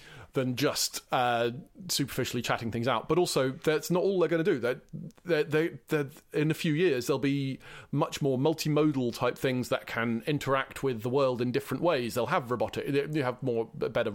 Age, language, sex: 30-49, English, male